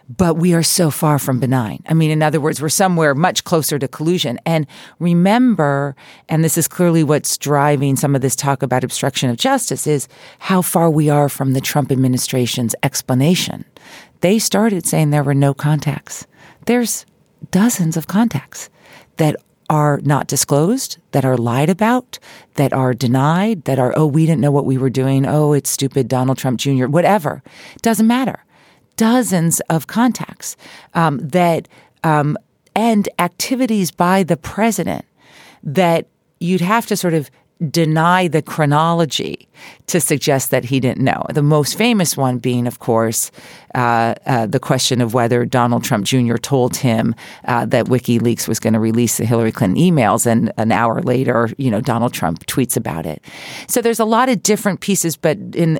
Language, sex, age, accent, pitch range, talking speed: English, female, 40-59, American, 130-180 Hz, 175 wpm